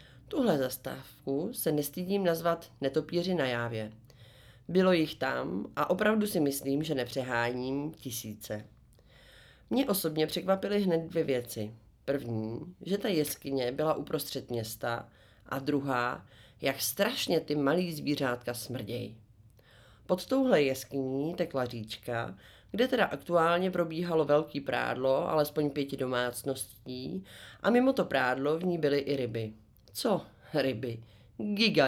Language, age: Czech, 30-49